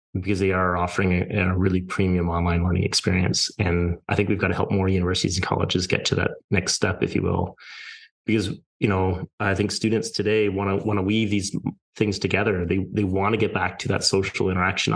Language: English